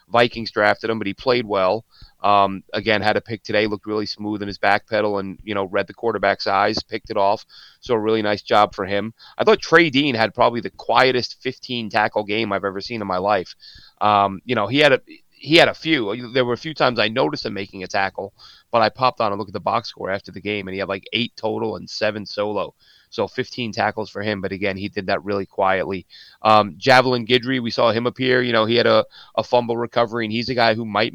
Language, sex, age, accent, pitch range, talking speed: English, male, 30-49, American, 100-120 Hz, 250 wpm